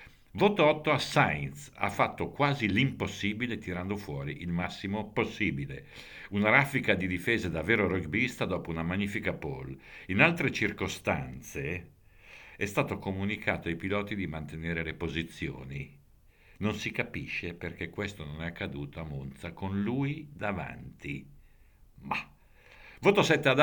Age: 60-79